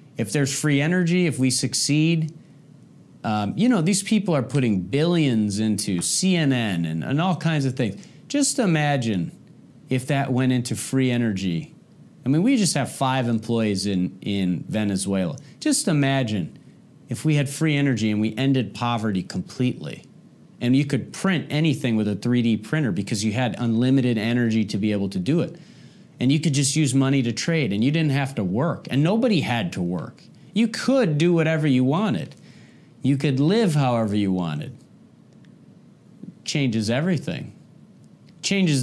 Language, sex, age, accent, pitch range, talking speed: English, male, 40-59, American, 115-160 Hz, 165 wpm